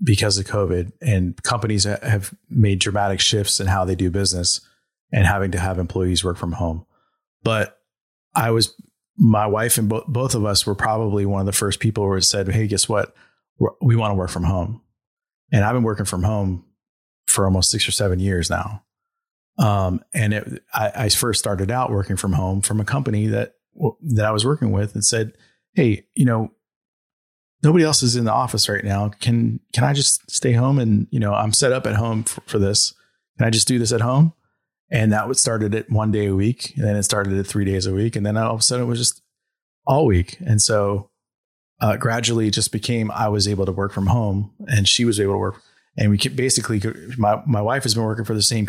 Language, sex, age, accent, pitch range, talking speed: English, male, 30-49, American, 100-120 Hz, 220 wpm